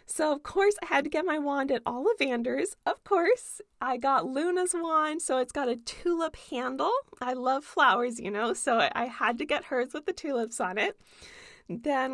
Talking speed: 200 wpm